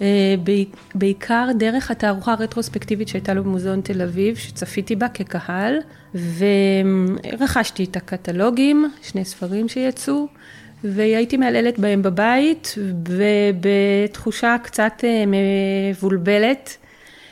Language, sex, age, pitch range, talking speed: Hebrew, female, 30-49, 195-225 Hz, 85 wpm